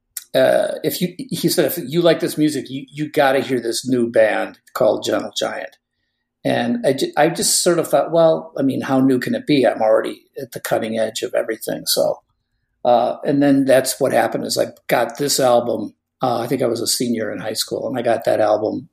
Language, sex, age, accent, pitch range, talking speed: English, male, 50-69, American, 120-155 Hz, 230 wpm